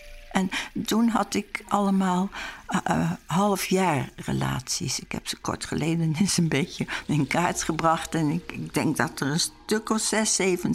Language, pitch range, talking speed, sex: Dutch, 165-210 Hz, 175 wpm, female